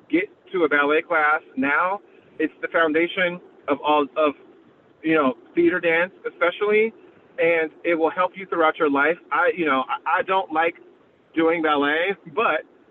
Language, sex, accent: English, male, American